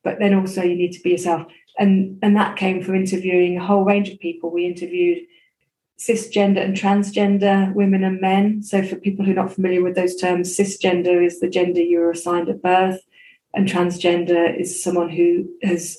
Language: English